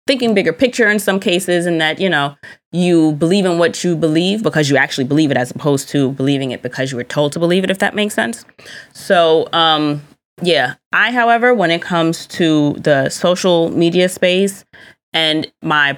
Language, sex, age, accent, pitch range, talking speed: English, female, 20-39, American, 145-185 Hz, 195 wpm